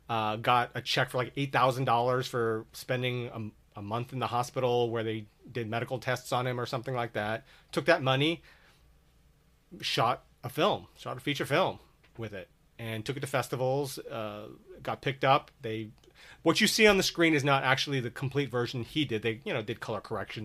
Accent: American